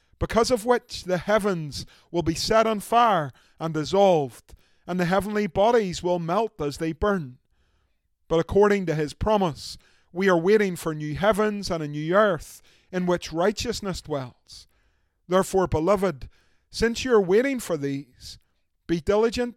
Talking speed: 155 wpm